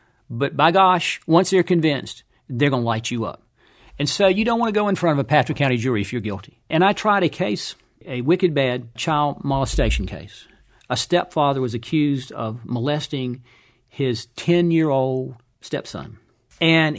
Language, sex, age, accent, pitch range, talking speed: English, male, 50-69, American, 130-165 Hz, 175 wpm